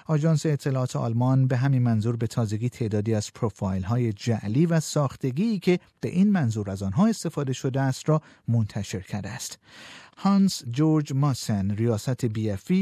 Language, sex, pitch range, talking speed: Persian, male, 110-155 Hz, 150 wpm